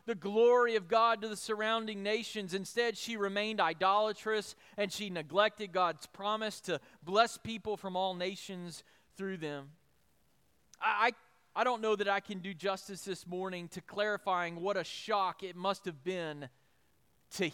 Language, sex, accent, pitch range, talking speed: English, male, American, 180-235 Hz, 155 wpm